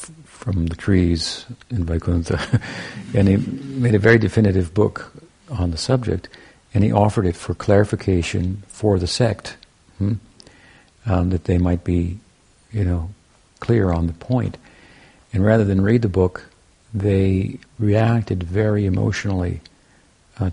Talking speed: 135 wpm